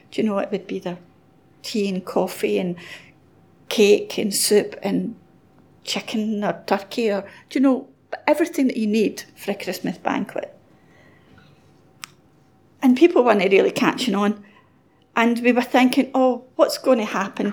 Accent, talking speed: British, 145 wpm